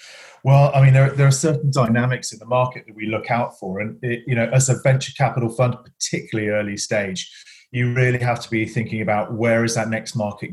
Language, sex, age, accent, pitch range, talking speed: English, male, 40-59, British, 110-135 Hz, 230 wpm